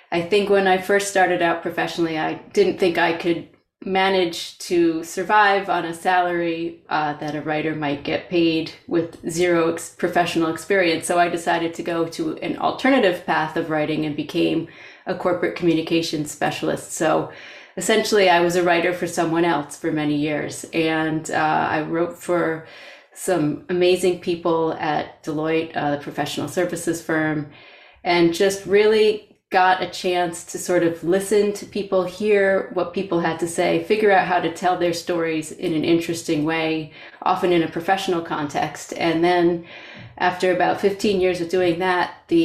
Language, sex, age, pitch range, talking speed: English, female, 30-49, 165-185 Hz, 165 wpm